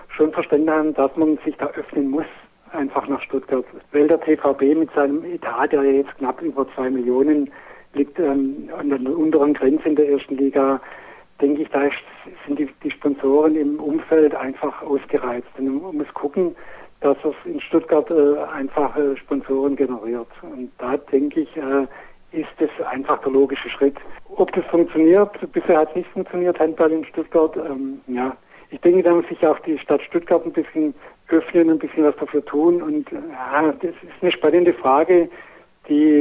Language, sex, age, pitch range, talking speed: German, male, 60-79, 140-160 Hz, 175 wpm